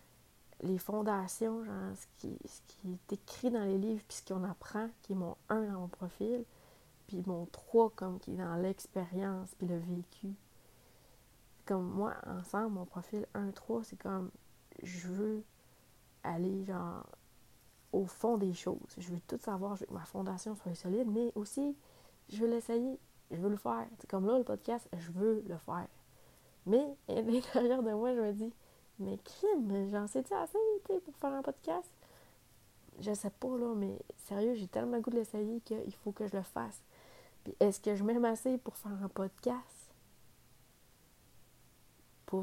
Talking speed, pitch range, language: 180 wpm, 185-225 Hz, French